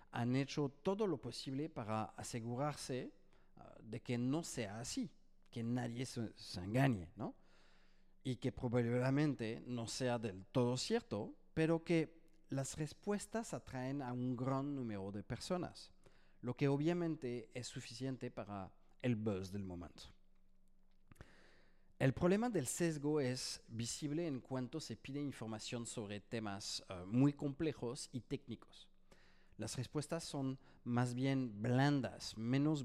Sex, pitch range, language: male, 115-165 Hz, Spanish